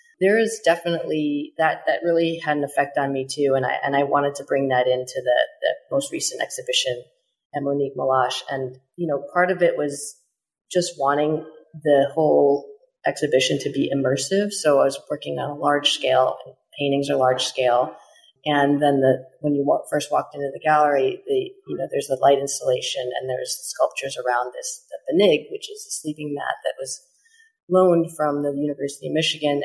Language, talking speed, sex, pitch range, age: English, 190 wpm, female, 140-195 Hz, 30-49